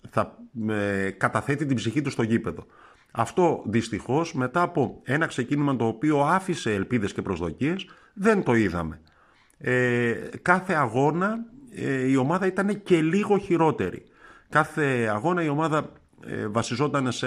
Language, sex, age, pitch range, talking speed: Greek, male, 50-69, 105-145 Hz, 140 wpm